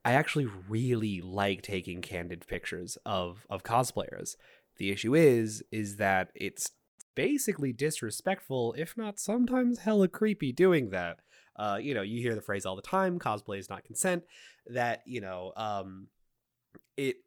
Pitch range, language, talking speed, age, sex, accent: 105-150 Hz, English, 155 wpm, 20-39, male, American